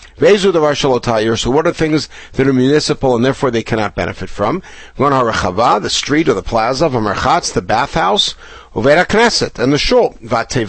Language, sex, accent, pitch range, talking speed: English, male, American, 120-170 Hz, 145 wpm